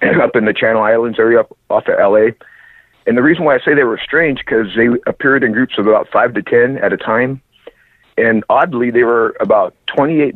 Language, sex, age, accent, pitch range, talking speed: English, male, 50-69, American, 105-130 Hz, 225 wpm